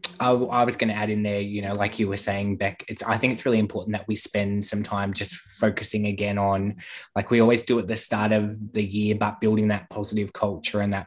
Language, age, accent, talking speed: English, 20-39, Australian, 260 wpm